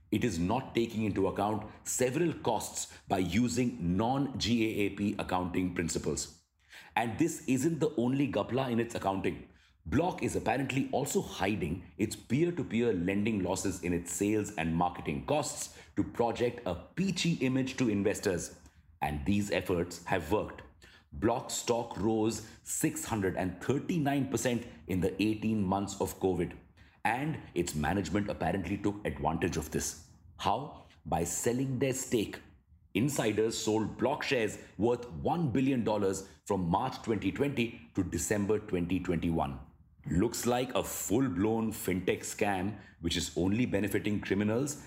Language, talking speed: English, 130 wpm